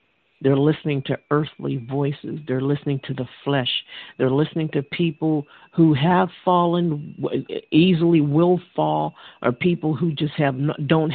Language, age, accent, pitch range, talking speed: English, 50-69, American, 135-165 Hz, 140 wpm